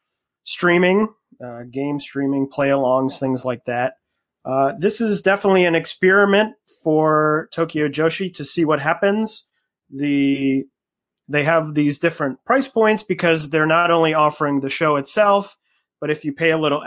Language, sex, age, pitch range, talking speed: English, male, 30-49, 145-180 Hz, 155 wpm